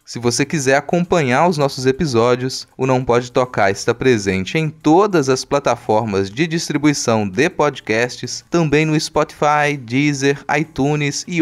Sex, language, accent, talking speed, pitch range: male, Portuguese, Brazilian, 140 wpm, 115-150 Hz